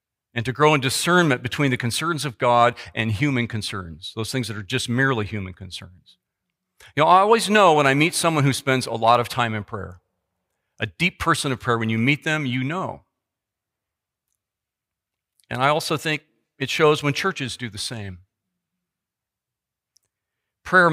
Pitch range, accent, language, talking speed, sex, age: 115-150 Hz, American, English, 175 wpm, male, 40-59